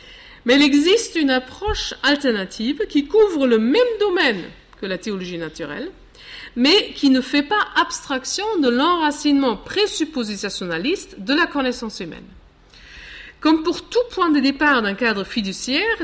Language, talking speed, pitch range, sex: French, 140 wpm, 210-315 Hz, female